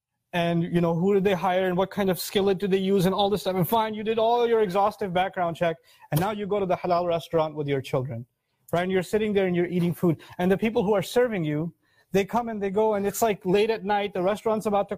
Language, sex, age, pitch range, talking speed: English, male, 30-49, 175-215 Hz, 280 wpm